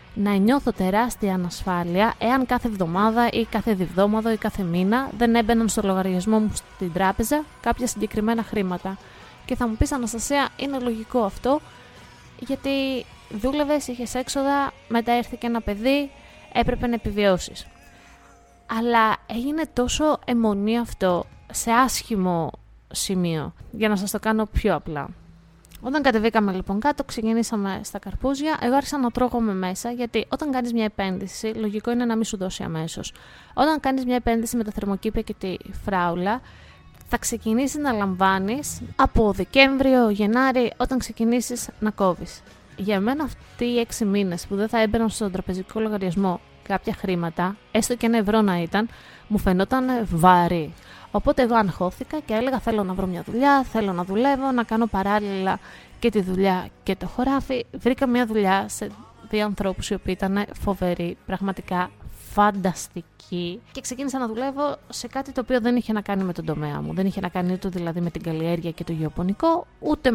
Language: Greek